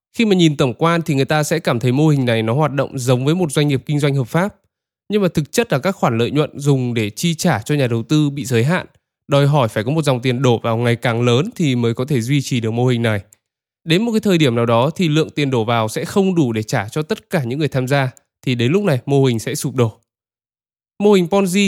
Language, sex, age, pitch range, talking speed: Vietnamese, male, 20-39, 120-155 Hz, 290 wpm